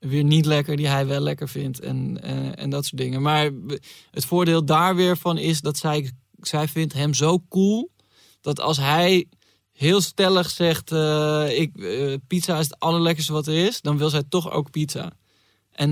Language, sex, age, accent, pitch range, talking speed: Dutch, male, 20-39, Dutch, 140-165 Hz, 185 wpm